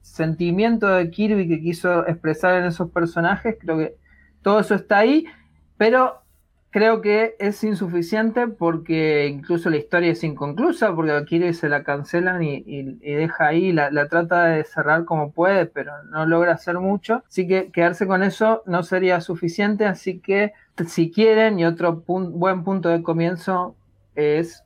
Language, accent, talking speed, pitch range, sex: Spanish, Argentinian, 170 wpm, 160-210 Hz, male